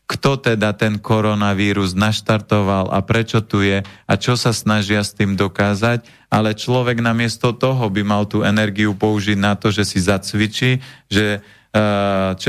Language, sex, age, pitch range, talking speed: Slovak, male, 30-49, 100-115 Hz, 155 wpm